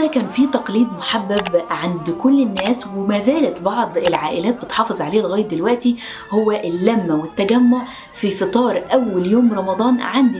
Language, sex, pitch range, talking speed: Arabic, female, 200-255 Hz, 140 wpm